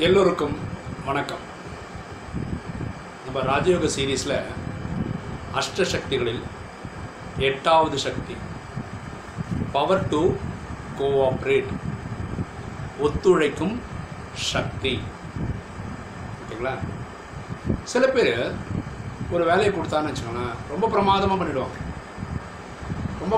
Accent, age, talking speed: native, 60-79, 60 wpm